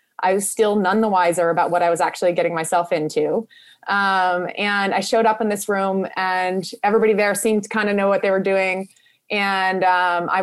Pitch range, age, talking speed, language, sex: 190-230 Hz, 20-39, 215 wpm, English, female